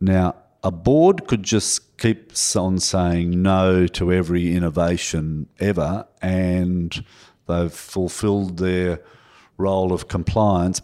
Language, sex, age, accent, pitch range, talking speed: English, male, 50-69, Australian, 85-100 Hz, 110 wpm